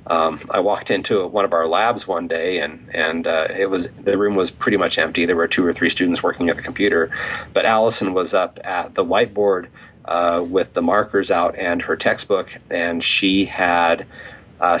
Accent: American